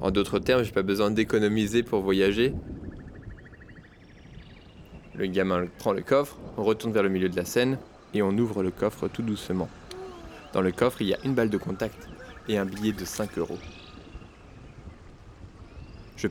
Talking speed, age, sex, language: 175 wpm, 20-39, male, French